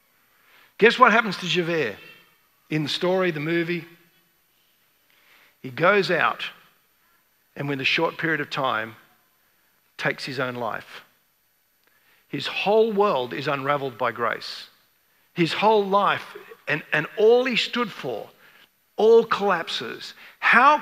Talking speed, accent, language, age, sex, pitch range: 125 wpm, Australian, English, 50-69, male, 170-230 Hz